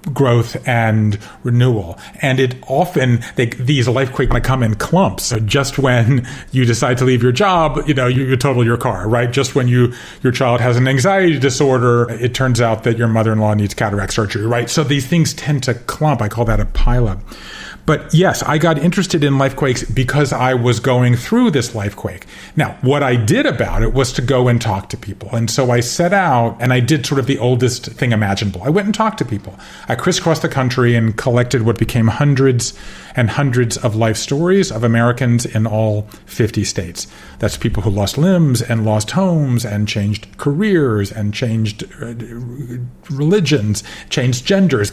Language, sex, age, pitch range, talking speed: English, male, 40-59, 110-140 Hz, 190 wpm